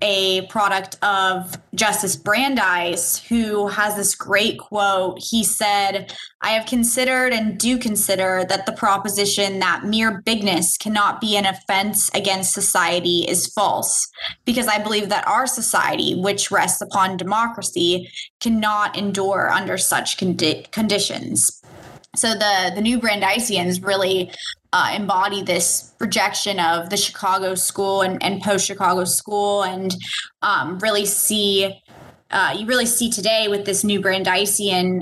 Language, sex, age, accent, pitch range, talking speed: English, female, 20-39, American, 185-215 Hz, 135 wpm